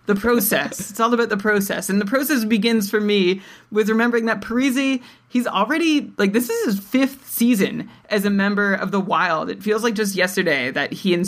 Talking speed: 210 wpm